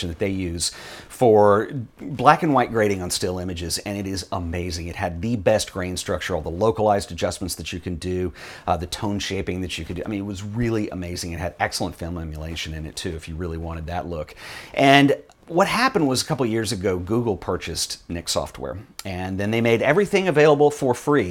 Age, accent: 40-59, American